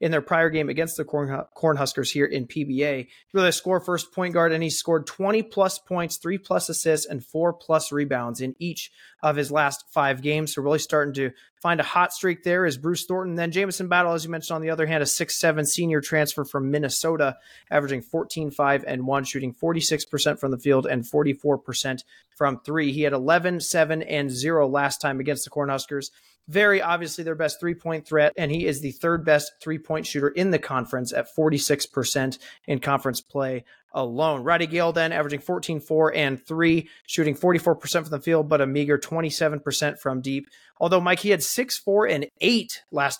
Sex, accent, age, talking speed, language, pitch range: male, American, 30-49, 185 wpm, English, 140-170 Hz